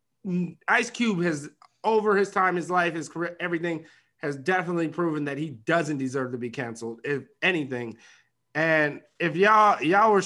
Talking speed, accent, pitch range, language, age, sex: 165 wpm, American, 150-190 Hz, English, 30-49, male